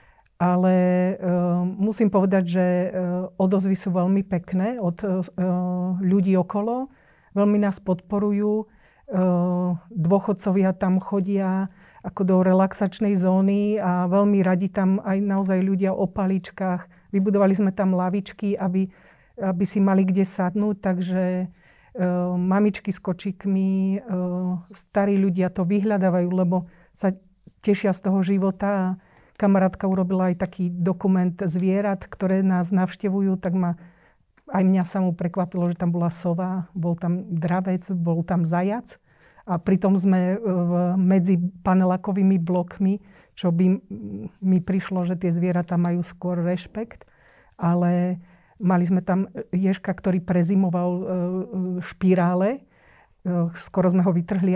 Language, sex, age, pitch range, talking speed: Slovak, female, 40-59, 180-195 Hz, 125 wpm